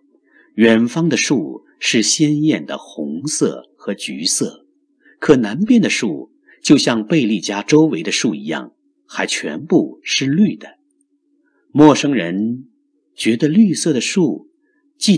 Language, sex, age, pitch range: Chinese, male, 50-69, 210-300 Hz